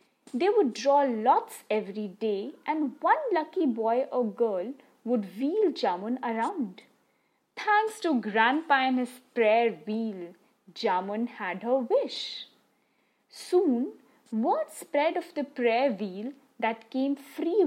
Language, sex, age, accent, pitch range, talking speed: English, female, 20-39, Indian, 225-320 Hz, 125 wpm